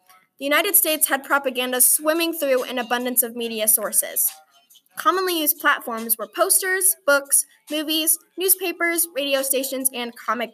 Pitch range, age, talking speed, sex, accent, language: 240-310 Hz, 10-29, 135 wpm, female, American, English